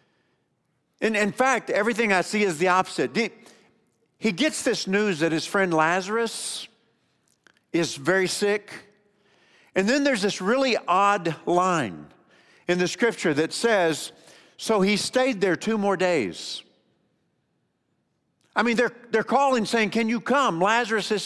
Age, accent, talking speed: 50-69, American, 145 wpm